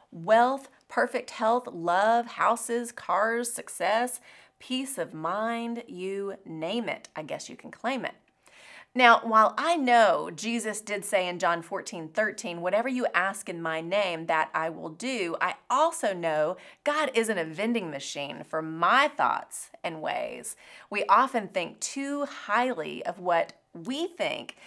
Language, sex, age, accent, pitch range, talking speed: English, female, 30-49, American, 180-250 Hz, 150 wpm